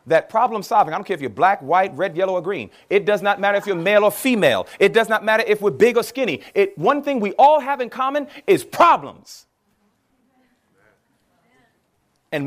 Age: 30-49